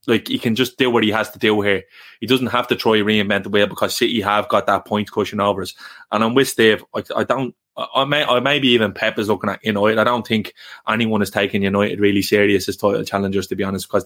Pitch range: 100-120 Hz